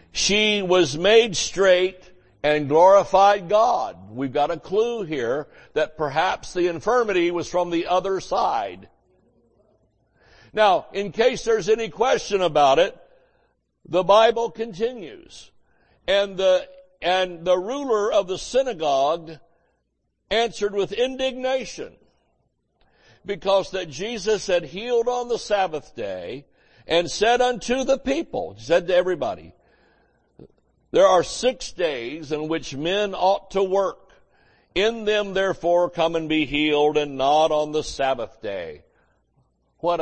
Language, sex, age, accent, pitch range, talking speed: English, male, 60-79, American, 155-215 Hz, 125 wpm